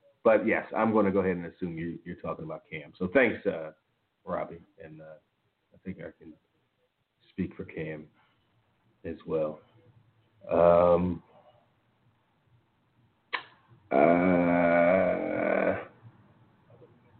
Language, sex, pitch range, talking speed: English, male, 90-125 Hz, 110 wpm